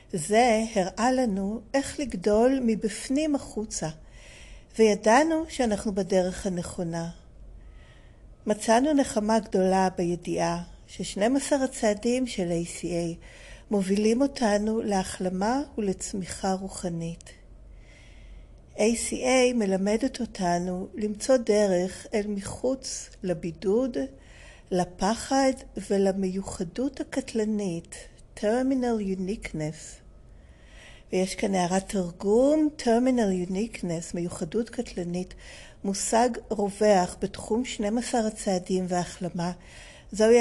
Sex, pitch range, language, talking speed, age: female, 180-230 Hz, Hebrew, 75 wpm, 50-69